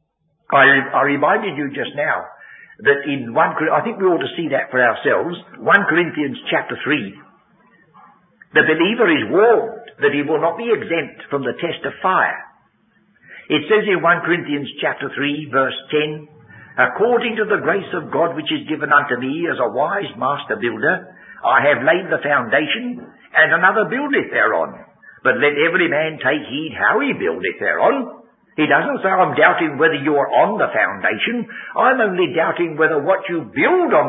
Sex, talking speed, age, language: male, 175 wpm, 60-79, English